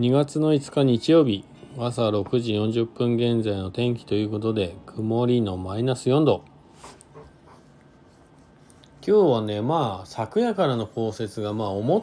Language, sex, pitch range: Japanese, male, 100-130 Hz